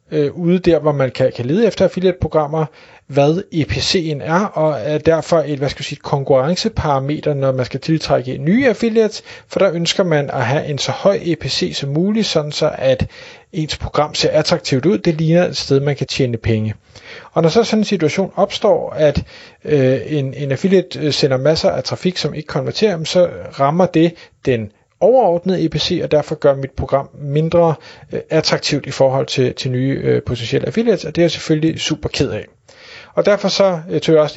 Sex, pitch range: male, 140-175 Hz